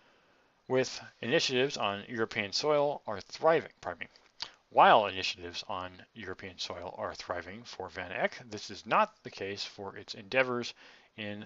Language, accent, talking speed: English, American, 140 wpm